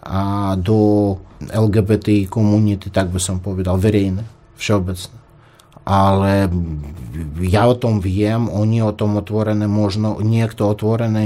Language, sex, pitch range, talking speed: Slovak, male, 100-120 Hz, 115 wpm